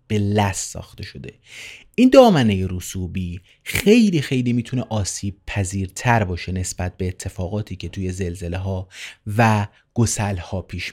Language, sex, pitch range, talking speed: Persian, male, 95-125 Hz, 125 wpm